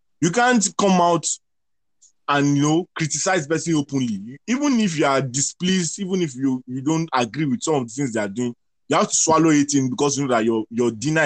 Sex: male